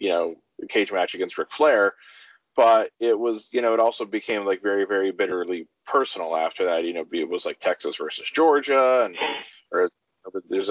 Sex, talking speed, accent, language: male, 185 wpm, American, English